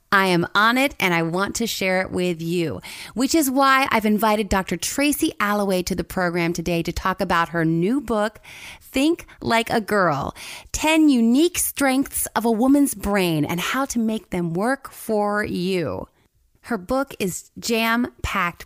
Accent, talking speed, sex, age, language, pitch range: American, 170 wpm, female, 30-49, English, 180-255 Hz